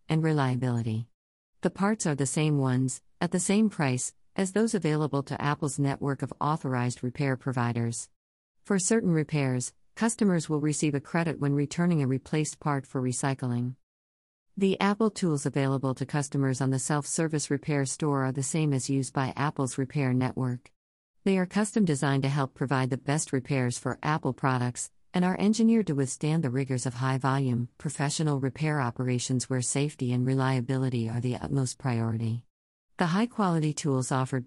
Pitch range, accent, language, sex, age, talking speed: 130-155 Hz, American, English, female, 50-69, 165 wpm